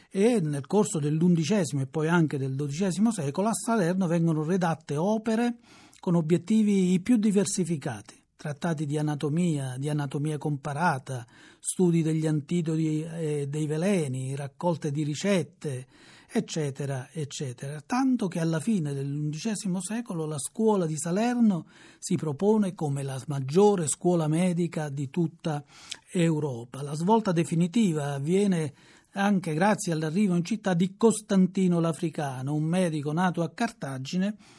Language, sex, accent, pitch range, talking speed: Italian, male, native, 150-185 Hz, 125 wpm